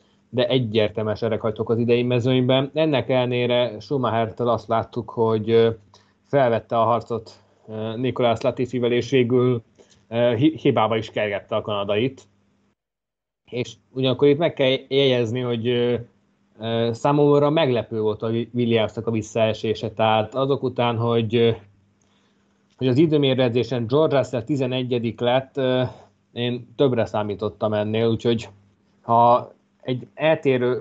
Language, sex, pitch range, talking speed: Hungarian, male, 110-125 Hz, 110 wpm